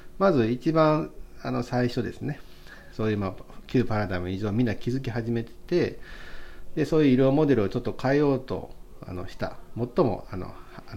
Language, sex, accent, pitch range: Japanese, male, native, 95-125 Hz